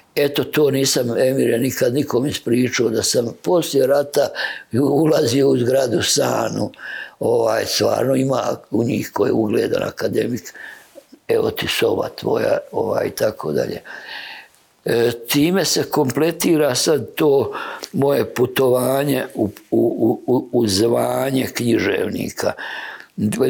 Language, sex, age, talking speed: Croatian, male, 60-79, 115 wpm